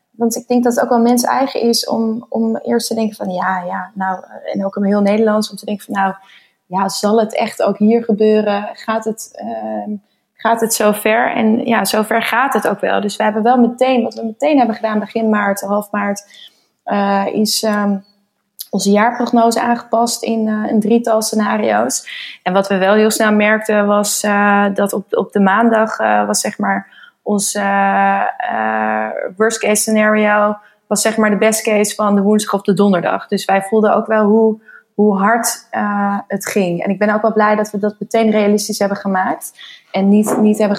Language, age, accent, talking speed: Dutch, 20-39, Dutch, 195 wpm